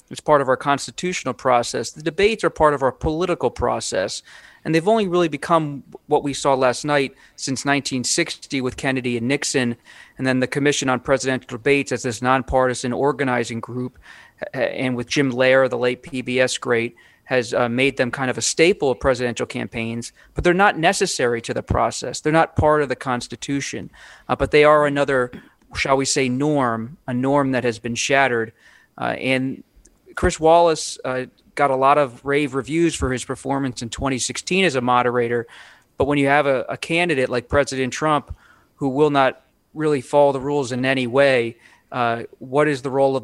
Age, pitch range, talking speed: 40-59, 125-140 Hz, 185 wpm